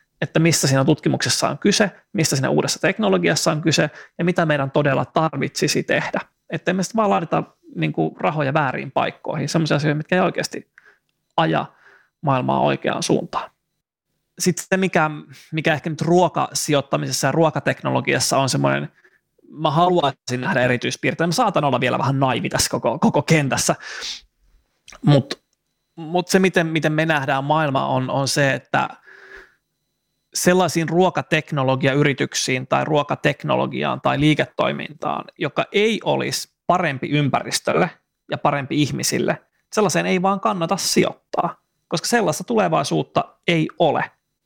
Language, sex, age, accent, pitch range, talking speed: Finnish, male, 30-49, native, 140-180 Hz, 130 wpm